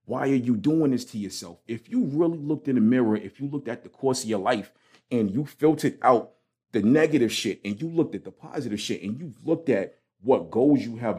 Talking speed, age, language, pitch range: 240 wpm, 40-59, English, 105-130 Hz